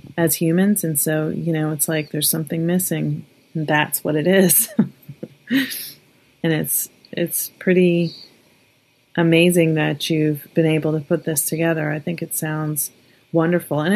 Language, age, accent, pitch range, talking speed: English, 30-49, American, 150-170 Hz, 145 wpm